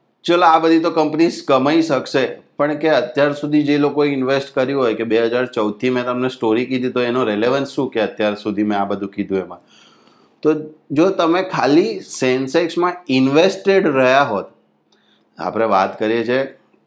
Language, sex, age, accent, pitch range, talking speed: Gujarati, male, 30-49, native, 110-145 Hz, 140 wpm